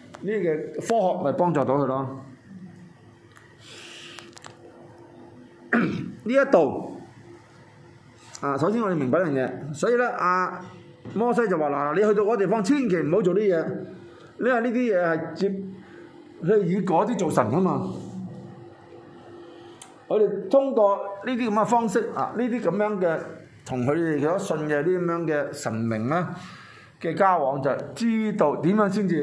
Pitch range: 130-205 Hz